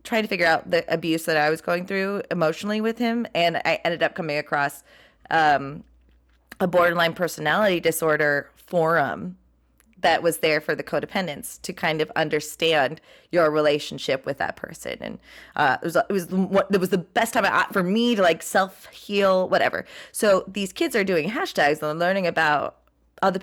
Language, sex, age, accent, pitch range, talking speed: English, female, 20-39, American, 160-205 Hz, 175 wpm